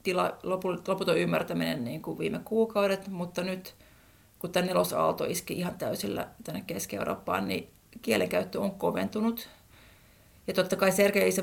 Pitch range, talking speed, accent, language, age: 175-210 Hz, 120 wpm, native, Finnish, 30-49